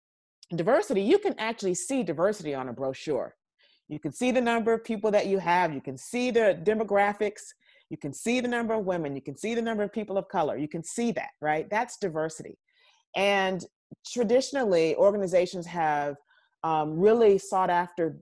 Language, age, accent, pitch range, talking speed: English, 30-49, American, 165-225 Hz, 180 wpm